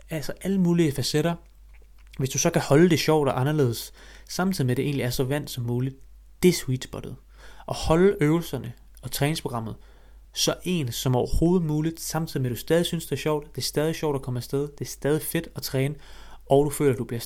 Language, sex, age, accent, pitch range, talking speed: Danish, male, 30-49, native, 125-155 Hz, 225 wpm